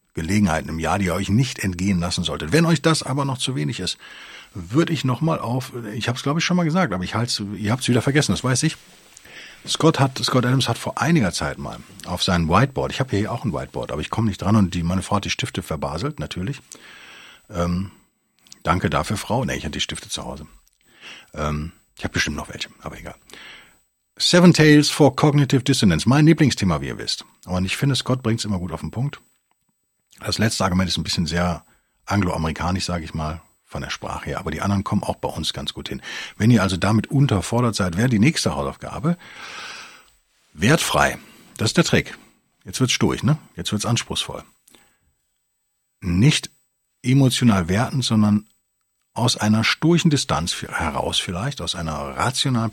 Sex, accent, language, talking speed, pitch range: male, German, German, 200 wpm, 90-130 Hz